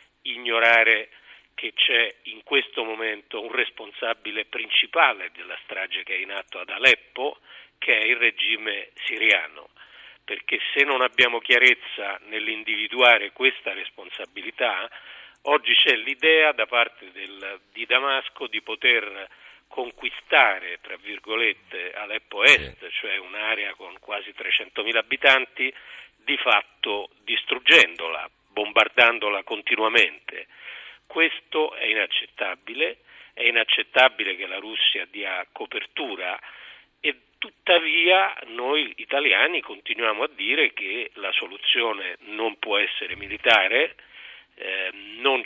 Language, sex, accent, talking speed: Italian, male, native, 110 wpm